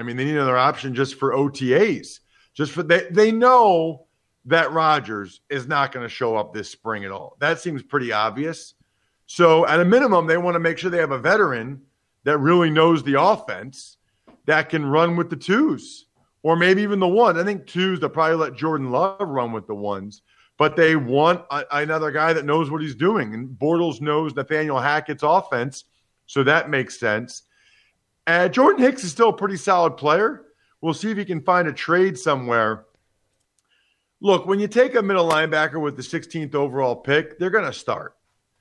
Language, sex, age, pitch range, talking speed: English, male, 40-59, 135-185 Hz, 195 wpm